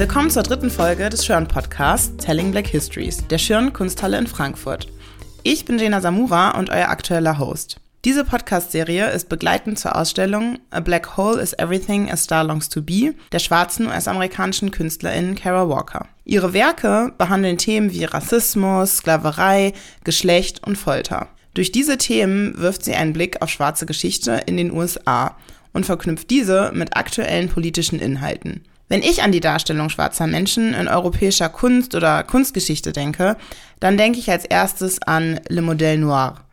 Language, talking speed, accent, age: German, 155 wpm, German, 20-39